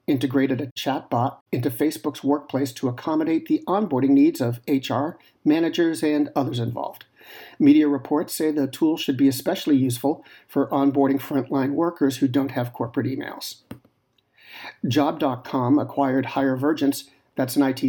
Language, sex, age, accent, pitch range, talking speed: English, male, 50-69, American, 135-155 Hz, 140 wpm